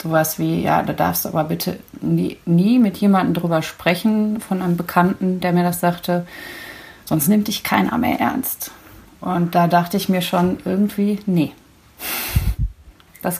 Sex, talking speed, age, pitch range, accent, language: female, 160 wpm, 30-49, 170-195 Hz, German, German